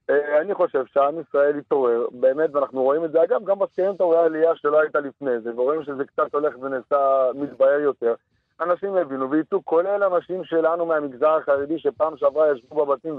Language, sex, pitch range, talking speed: Hebrew, male, 140-180 Hz, 75 wpm